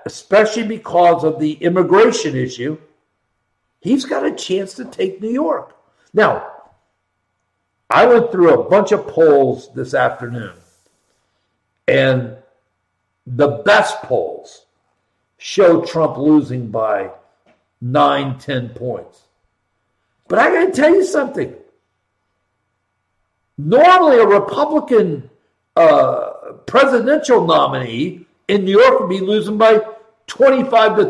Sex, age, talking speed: male, 60-79, 110 wpm